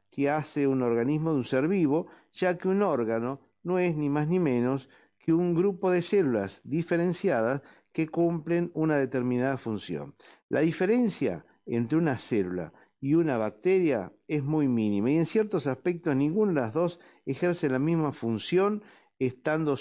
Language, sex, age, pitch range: Spanish, male, 50-69, 120-170 Hz